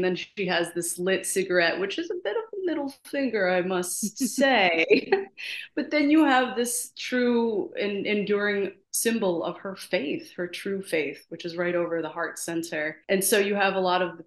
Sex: female